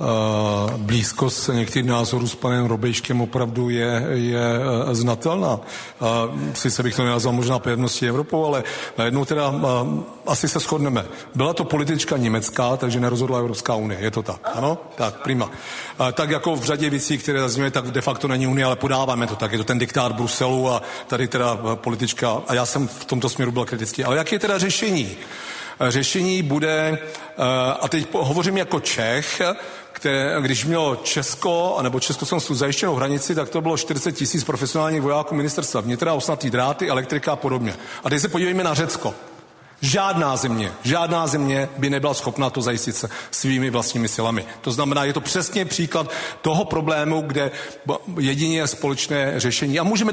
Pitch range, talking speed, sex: 125-160 Hz, 165 wpm, male